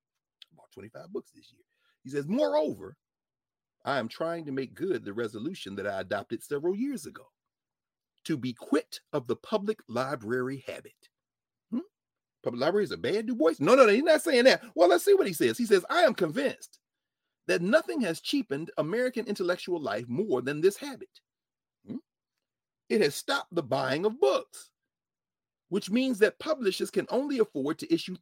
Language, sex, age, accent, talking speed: English, male, 40-59, American, 175 wpm